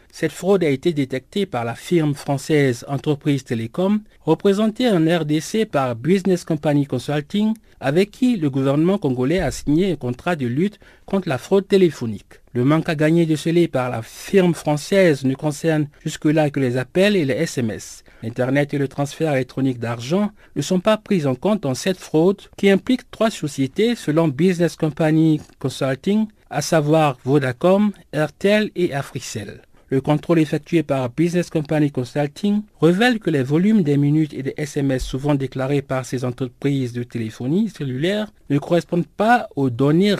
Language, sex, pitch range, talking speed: French, male, 135-185 Hz, 165 wpm